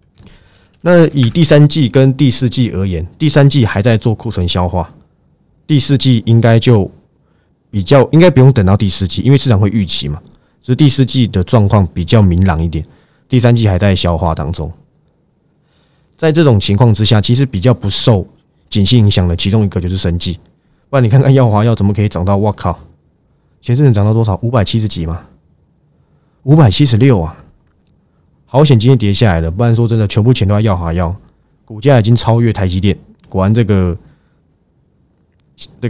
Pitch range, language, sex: 95-130 Hz, Chinese, male